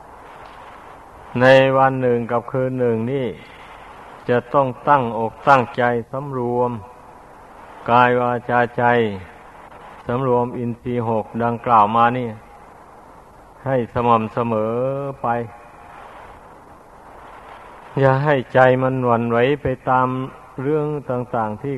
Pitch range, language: 120-130 Hz, Thai